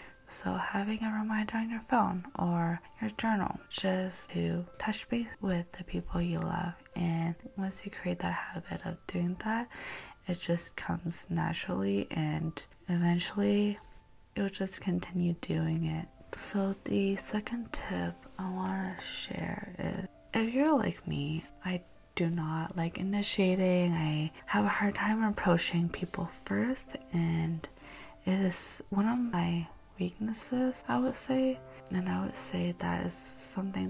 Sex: female